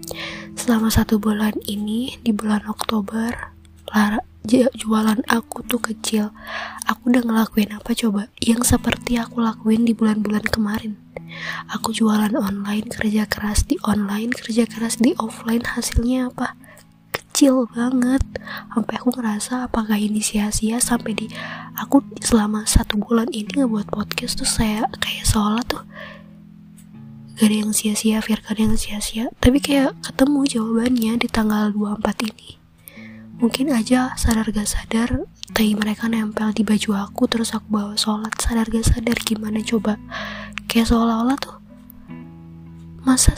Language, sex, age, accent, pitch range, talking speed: Italian, female, 20-39, Indonesian, 210-235 Hz, 140 wpm